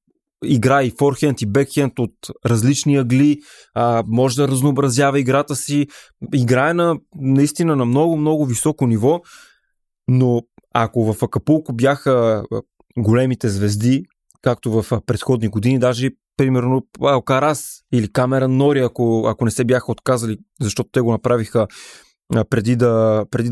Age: 20-39